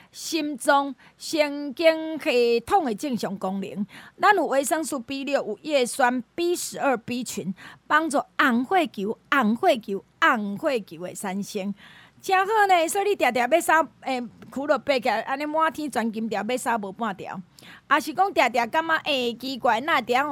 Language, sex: Chinese, female